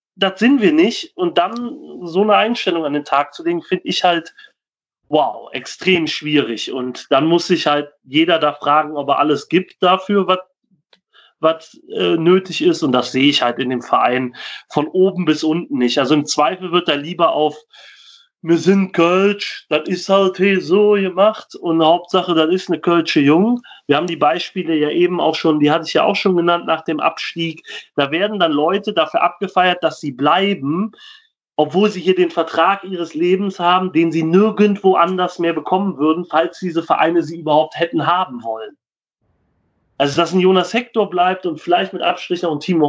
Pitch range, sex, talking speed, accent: 160-195 Hz, male, 185 wpm, German